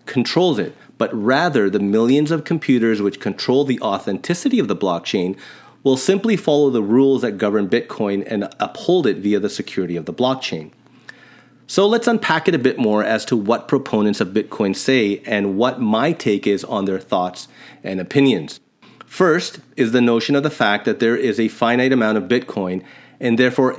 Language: English